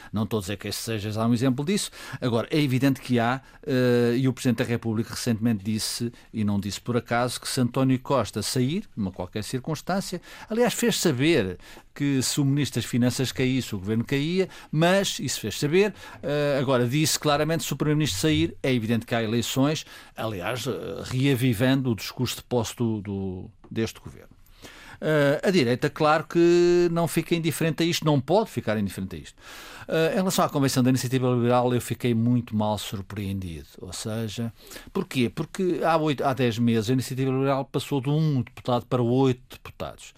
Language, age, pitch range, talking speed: Portuguese, 50-69, 120-155 Hz, 180 wpm